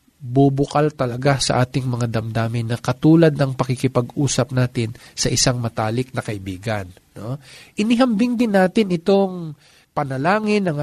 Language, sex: Filipino, male